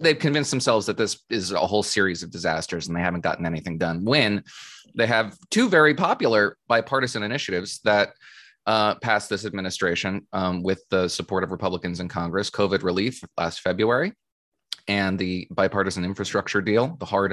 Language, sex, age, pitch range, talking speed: English, male, 20-39, 90-115 Hz, 170 wpm